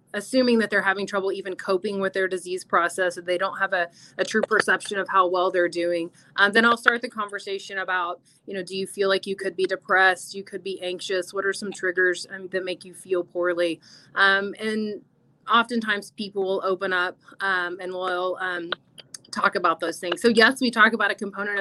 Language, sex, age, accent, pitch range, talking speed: English, female, 30-49, American, 185-220 Hz, 215 wpm